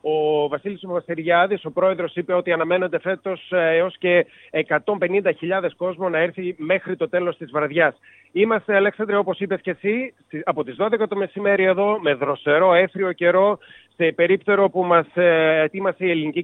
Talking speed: 160 wpm